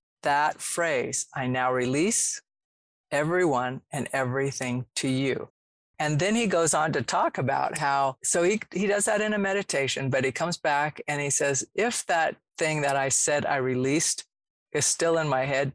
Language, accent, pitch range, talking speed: English, American, 130-165 Hz, 180 wpm